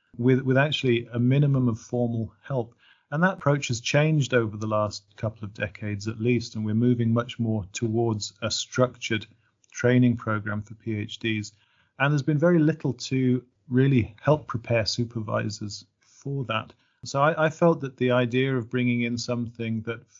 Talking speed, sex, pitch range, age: 170 wpm, male, 110-125 Hz, 40-59